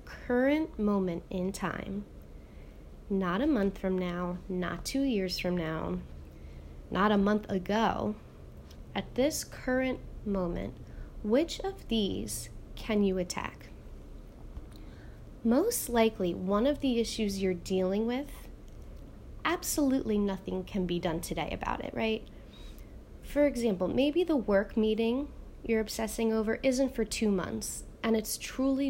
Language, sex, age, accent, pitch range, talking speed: English, female, 20-39, American, 160-235 Hz, 130 wpm